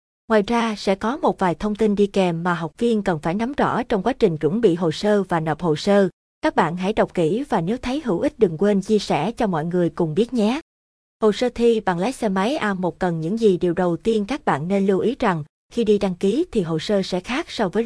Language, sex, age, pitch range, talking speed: Vietnamese, female, 20-39, 180-225 Hz, 265 wpm